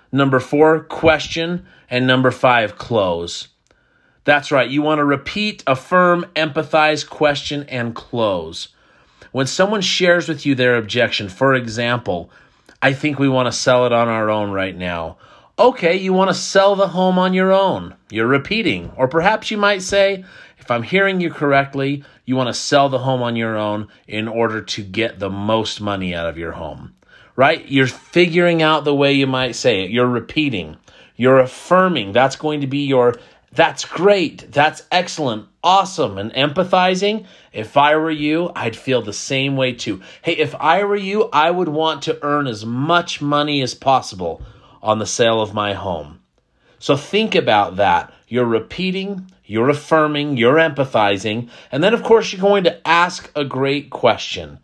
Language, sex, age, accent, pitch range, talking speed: English, male, 30-49, American, 120-170 Hz, 175 wpm